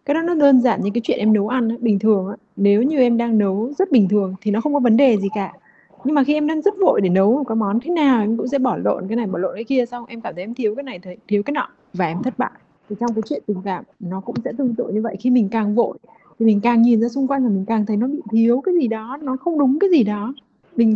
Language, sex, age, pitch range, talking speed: Vietnamese, female, 20-39, 200-255 Hz, 315 wpm